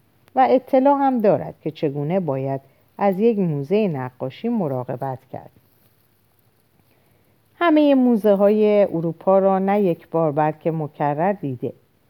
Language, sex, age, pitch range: Persian, female, 50-69, 135-200 Hz